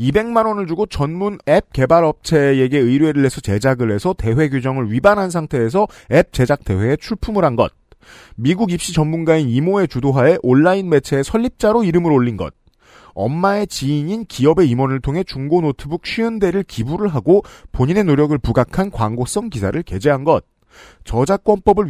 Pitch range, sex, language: 130-195 Hz, male, Korean